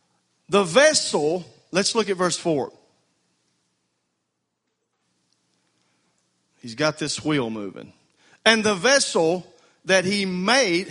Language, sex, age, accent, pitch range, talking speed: English, male, 40-59, American, 165-220 Hz, 100 wpm